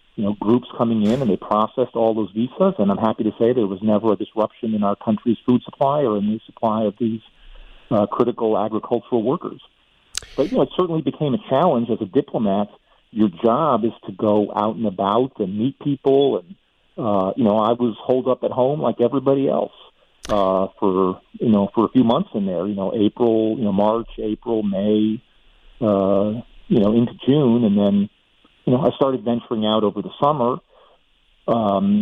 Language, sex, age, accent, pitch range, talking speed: English, male, 40-59, American, 105-130 Hz, 195 wpm